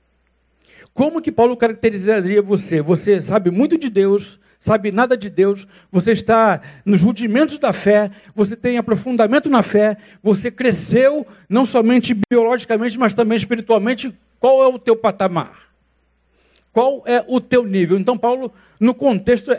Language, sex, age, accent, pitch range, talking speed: Portuguese, male, 60-79, Brazilian, 200-245 Hz, 145 wpm